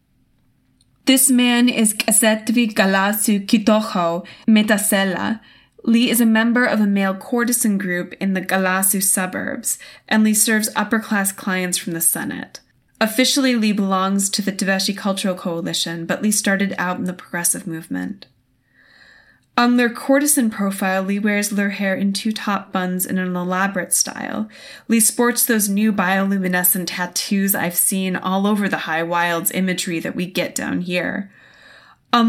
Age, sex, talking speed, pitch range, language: 20-39, female, 150 wpm, 180-220 Hz, English